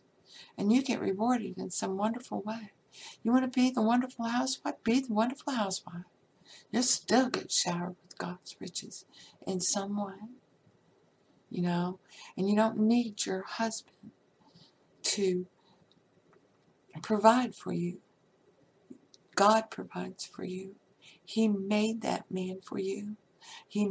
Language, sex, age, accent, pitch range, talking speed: English, female, 60-79, American, 175-215 Hz, 130 wpm